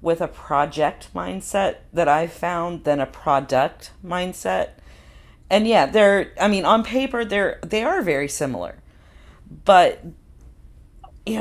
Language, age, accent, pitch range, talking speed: English, 40-59, American, 140-185 Hz, 130 wpm